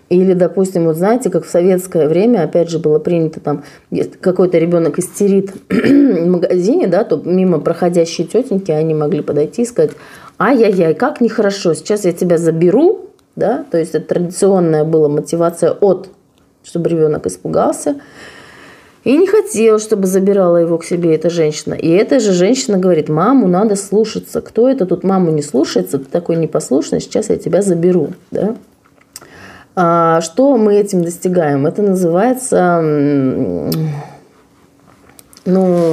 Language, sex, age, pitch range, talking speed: Russian, female, 30-49, 165-210 Hz, 145 wpm